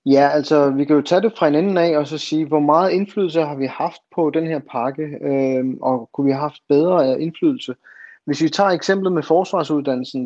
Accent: native